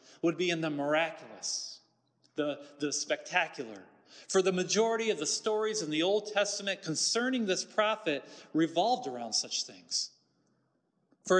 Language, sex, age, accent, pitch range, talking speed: English, male, 40-59, American, 150-195 Hz, 135 wpm